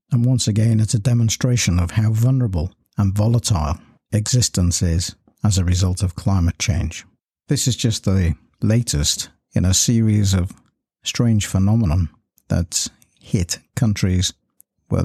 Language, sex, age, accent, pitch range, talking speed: English, male, 50-69, British, 90-110 Hz, 135 wpm